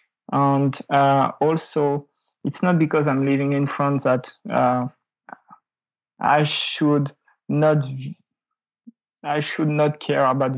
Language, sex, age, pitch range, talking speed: English, male, 20-39, 135-150 Hz, 115 wpm